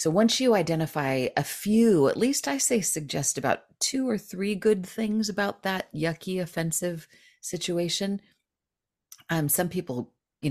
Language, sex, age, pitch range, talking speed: English, female, 40-59, 125-165 Hz, 150 wpm